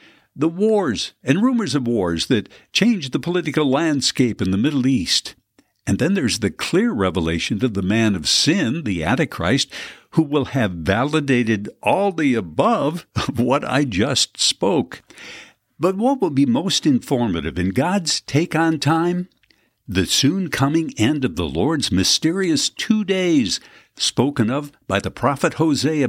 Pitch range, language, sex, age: 115-185 Hz, English, male, 60-79